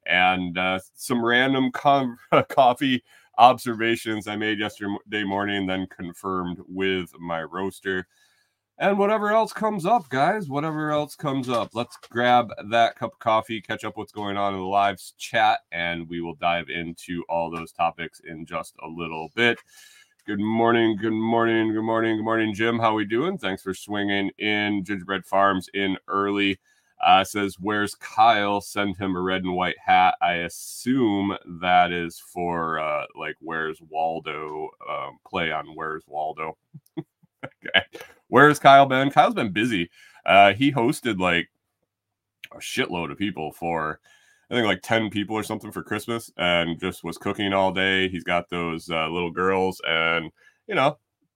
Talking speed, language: 165 wpm, English